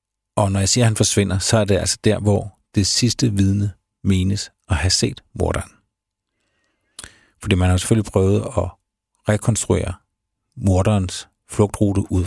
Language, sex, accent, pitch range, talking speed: Danish, male, native, 95-105 Hz, 150 wpm